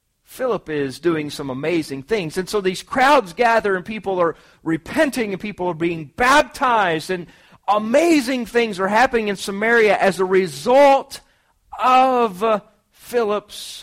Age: 40-59